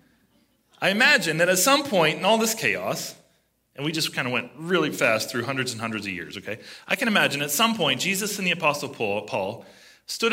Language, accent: English, American